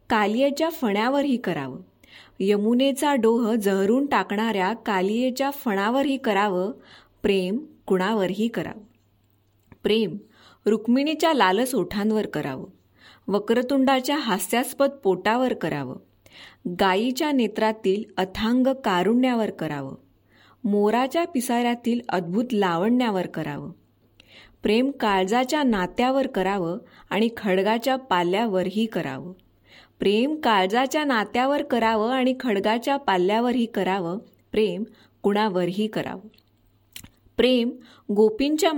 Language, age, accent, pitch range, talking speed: Marathi, 20-39, native, 190-250 Hz, 80 wpm